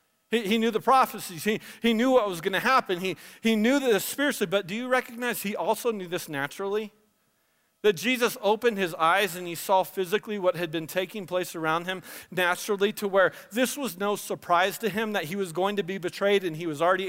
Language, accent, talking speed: English, American, 220 wpm